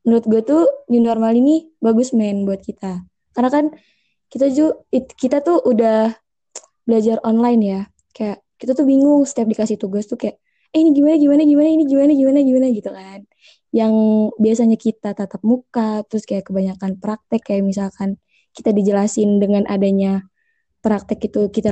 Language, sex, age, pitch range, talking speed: Indonesian, female, 20-39, 205-250 Hz, 165 wpm